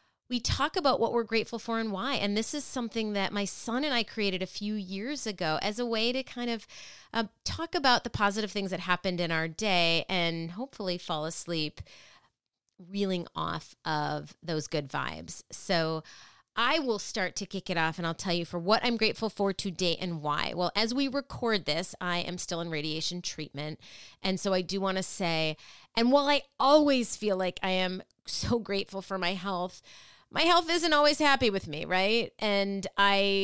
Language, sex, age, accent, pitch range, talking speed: English, female, 30-49, American, 180-240 Hz, 200 wpm